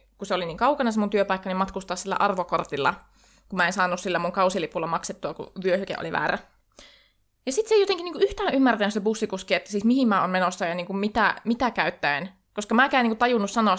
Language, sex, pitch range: Finnish, female, 190-260 Hz